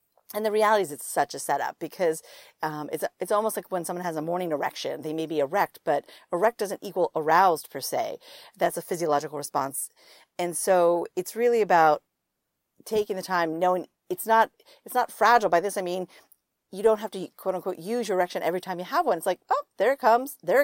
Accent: American